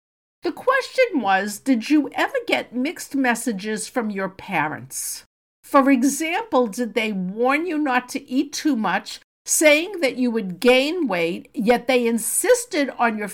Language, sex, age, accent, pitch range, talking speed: English, female, 50-69, American, 230-305 Hz, 155 wpm